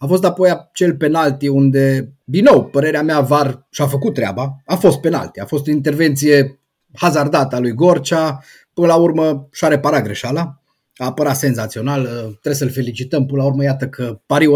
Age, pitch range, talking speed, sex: 30-49, 135-175 Hz, 175 wpm, male